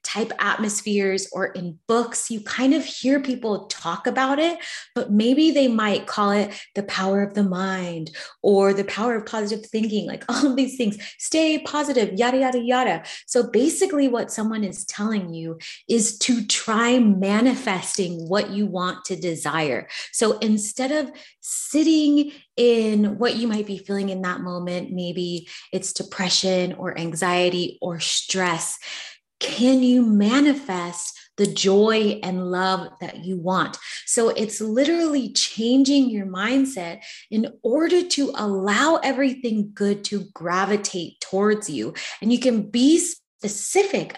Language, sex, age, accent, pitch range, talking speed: English, female, 20-39, American, 185-245 Hz, 145 wpm